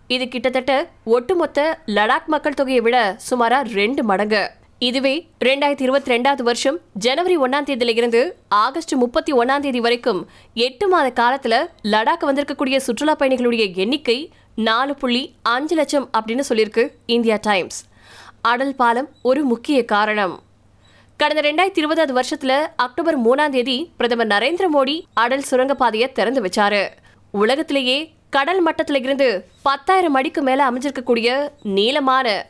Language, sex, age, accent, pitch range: Tamil, female, 20-39, native, 235-295 Hz